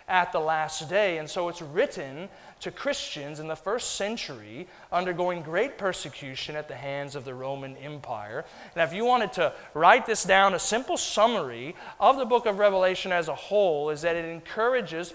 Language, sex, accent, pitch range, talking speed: English, male, American, 145-195 Hz, 185 wpm